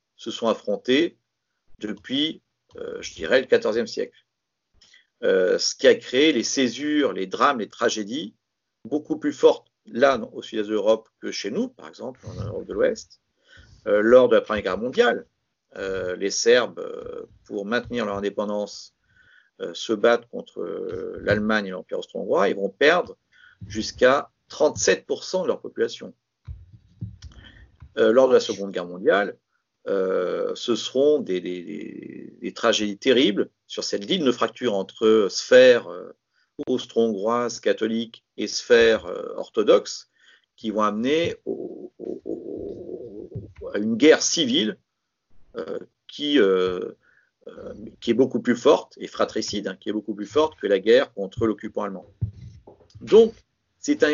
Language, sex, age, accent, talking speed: French, male, 50-69, French, 150 wpm